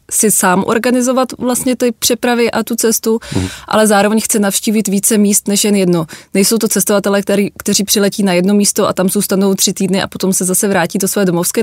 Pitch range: 180-200 Hz